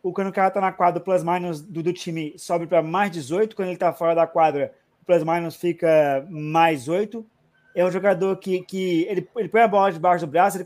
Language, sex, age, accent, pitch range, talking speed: Portuguese, male, 20-39, Brazilian, 170-210 Hz, 225 wpm